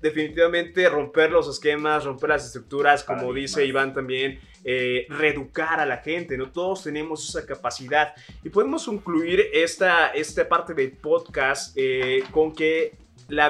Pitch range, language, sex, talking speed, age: 135-185 Hz, Spanish, male, 145 wpm, 20-39